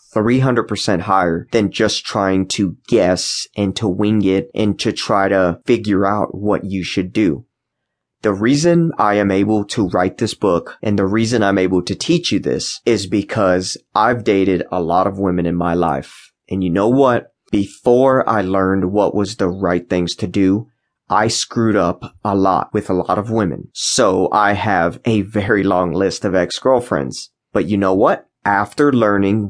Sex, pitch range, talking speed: male, 95-110 Hz, 180 wpm